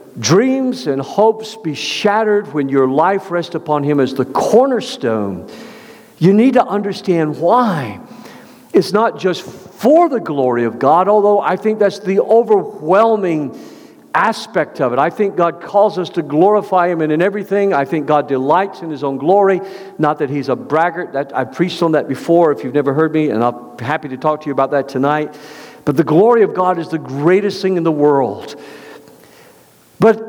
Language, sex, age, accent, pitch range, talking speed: English, male, 50-69, American, 160-245 Hz, 185 wpm